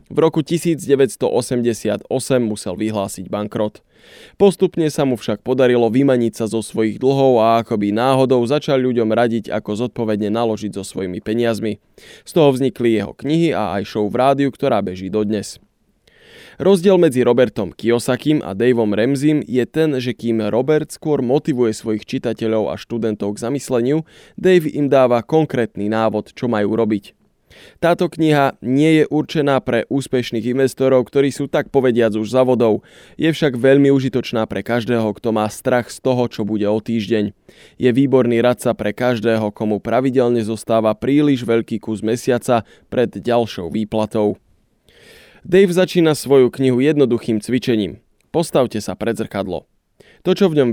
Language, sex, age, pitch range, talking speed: Slovak, male, 20-39, 110-135 Hz, 150 wpm